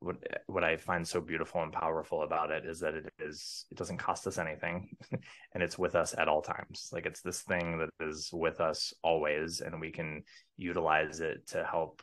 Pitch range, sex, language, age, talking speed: 80-85 Hz, male, English, 20-39, 210 wpm